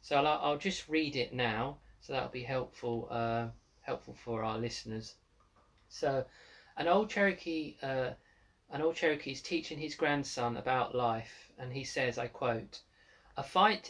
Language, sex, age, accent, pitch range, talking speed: English, male, 40-59, British, 120-150 Hz, 160 wpm